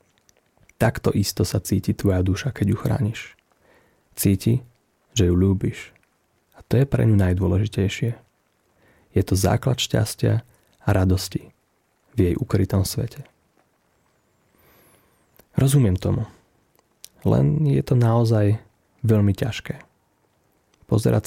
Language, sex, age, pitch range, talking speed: Slovak, male, 30-49, 95-120 Hz, 105 wpm